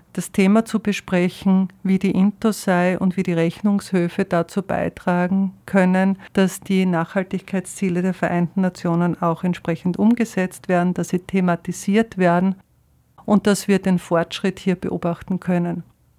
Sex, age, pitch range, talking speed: female, 50-69, 175-195 Hz, 135 wpm